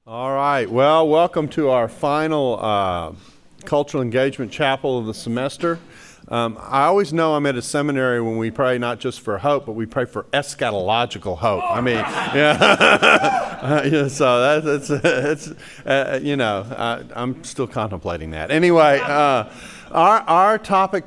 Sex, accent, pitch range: male, American, 120-155 Hz